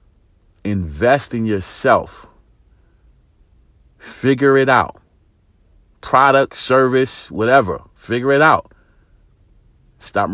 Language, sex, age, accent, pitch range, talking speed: English, male, 40-59, American, 95-120 Hz, 75 wpm